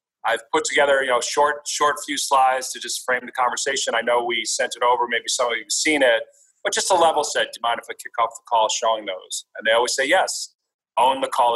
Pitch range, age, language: 125-160 Hz, 40-59, English